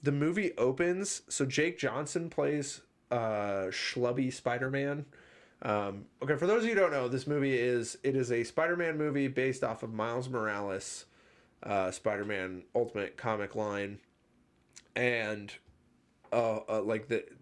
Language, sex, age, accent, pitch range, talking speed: English, male, 20-39, American, 100-145 Hz, 145 wpm